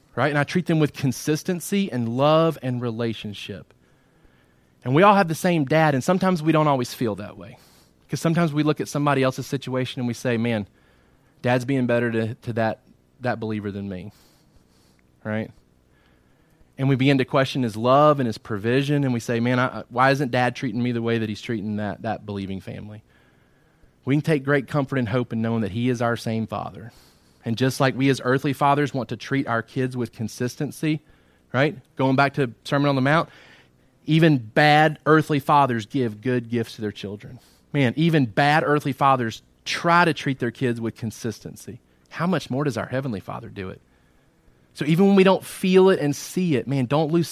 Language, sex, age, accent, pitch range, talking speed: English, male, 30-49, American, 115-150 Hz, 200 wpm